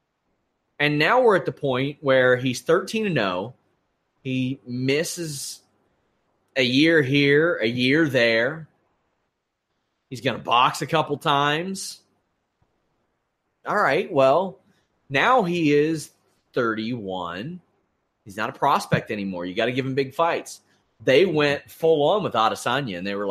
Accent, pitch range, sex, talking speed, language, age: American, 125-160 Hz, male, 135 wpm, English, 30-49